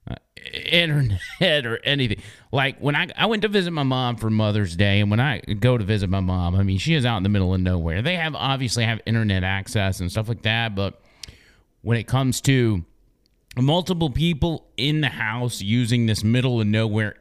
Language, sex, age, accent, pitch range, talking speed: English, male, 30-49, American, 105-155 Hz, 200 wpm